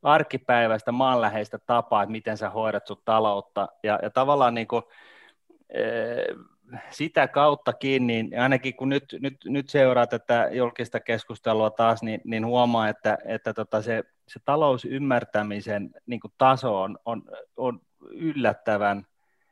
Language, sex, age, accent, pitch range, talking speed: Finnish, male, 30-49, native, 110-135 Hz, 135 wpm